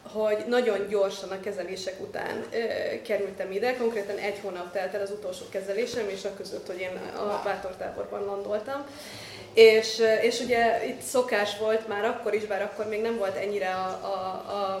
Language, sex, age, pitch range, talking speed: Hungarian, female, 20-39, 200-230 Hz, 180 wpm